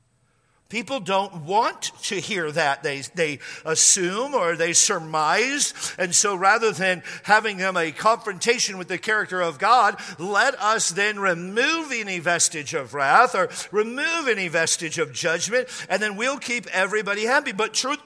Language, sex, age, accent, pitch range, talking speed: English, male, 50-69, American, 160-225 Hz, 155 wpm